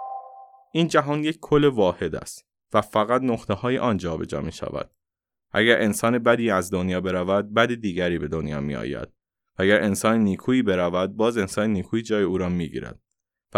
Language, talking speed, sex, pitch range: Persian, 170 wpm, male, 95-125 Hz